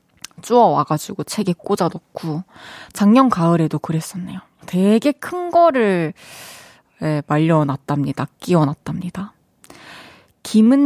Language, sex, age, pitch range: Korean, female, 20-39, 170-245 Hz